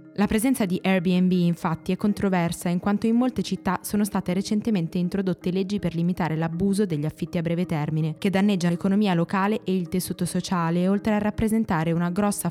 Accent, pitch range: native, 170-205 Hz